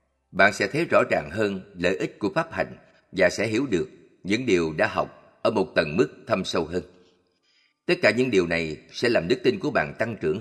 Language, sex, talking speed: Vietnamese, male, 225 wpm